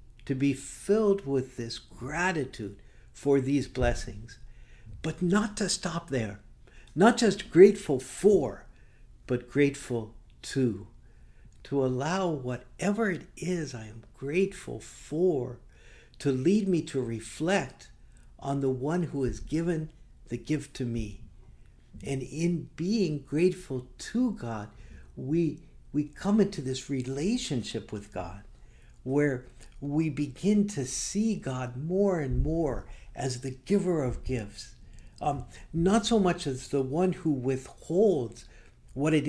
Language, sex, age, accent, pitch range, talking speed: English, male, 60-79, American, 115-165 Hz, 130 wpm